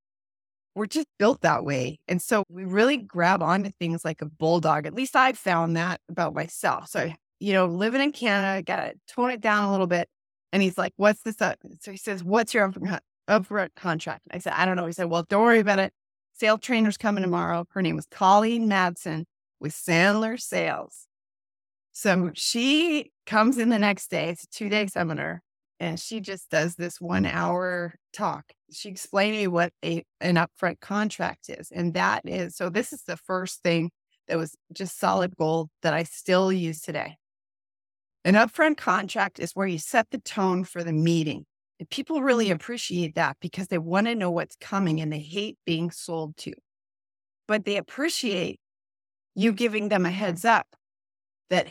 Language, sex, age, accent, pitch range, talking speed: English, female, 20-39, American, 165-210 Hz, 190 wpm